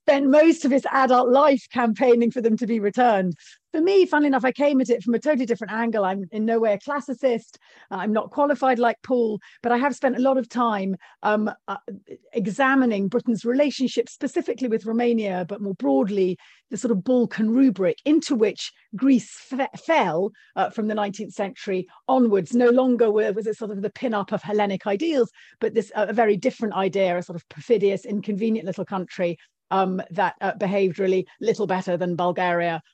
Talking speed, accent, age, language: 195 wpm, British, 40-59, English